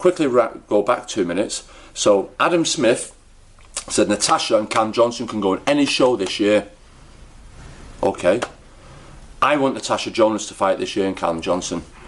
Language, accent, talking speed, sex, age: English, British, 160 wpm, male, 40-59